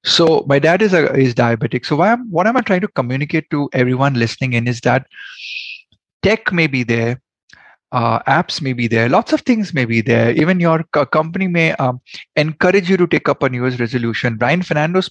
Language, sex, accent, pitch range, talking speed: Hindi, male, native, 125-170 Hz, 215 wpm